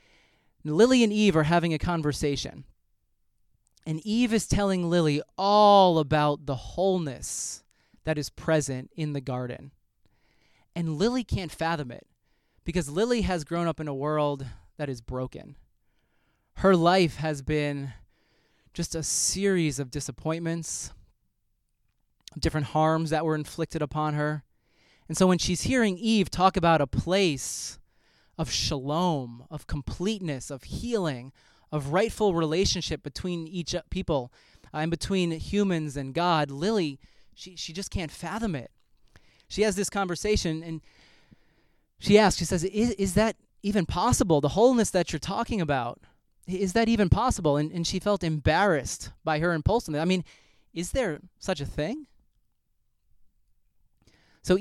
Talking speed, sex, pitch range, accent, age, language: 140 wpm, male, 150-190 Hz, American, 20-39, English